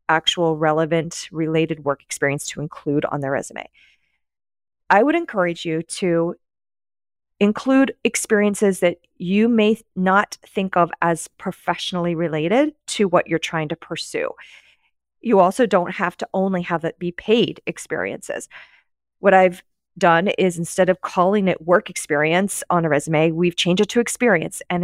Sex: female